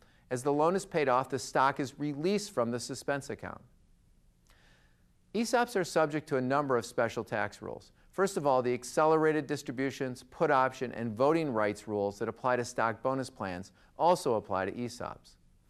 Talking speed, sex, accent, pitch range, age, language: 175 wpm, male, American, 115-155 Hz, 40-59, English